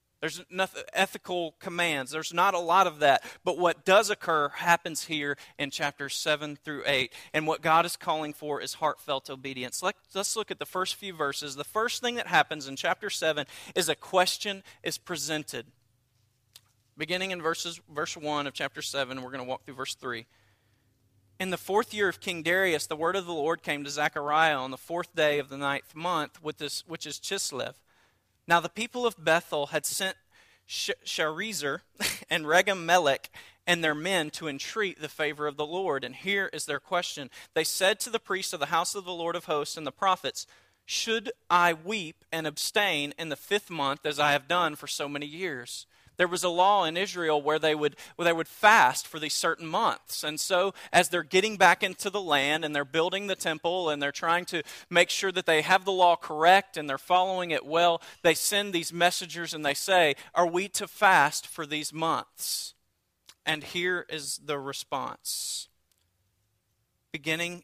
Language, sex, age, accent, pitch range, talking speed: English, male, 40-59, American, 145-180 Hz, 195 wpm